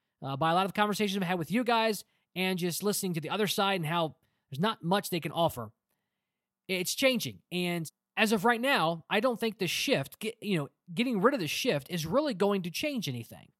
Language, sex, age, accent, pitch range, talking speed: English, male, 20-39, American, 155-210 Hz, 230 wpm